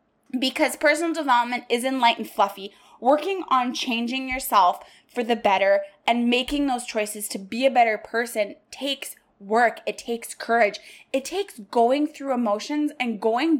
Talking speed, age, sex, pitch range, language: 150 wpm, 20-39, female, 225-285 Hz, English